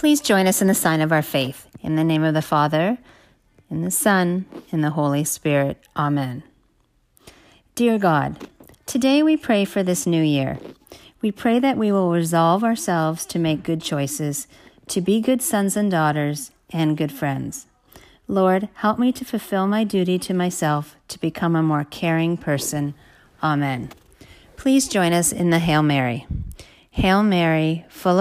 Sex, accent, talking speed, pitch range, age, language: female, American, 165 wpm, 150-195 Hz, 40-59, English